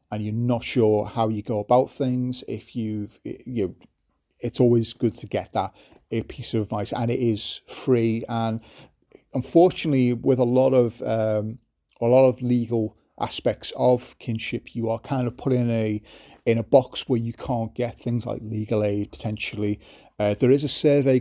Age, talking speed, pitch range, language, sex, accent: 30-49, 185 wpm, 110-130 Hz, English, male, British